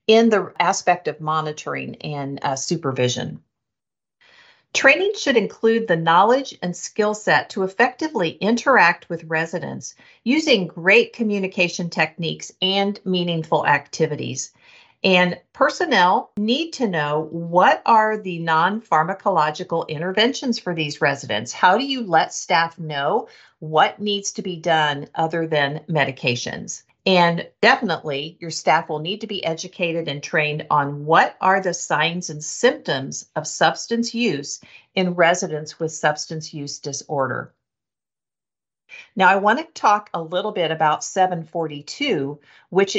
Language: English